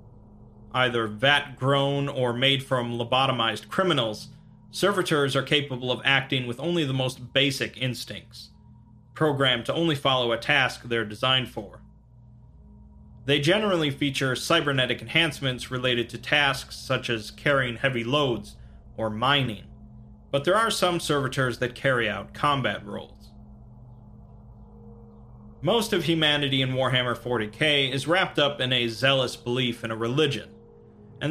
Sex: male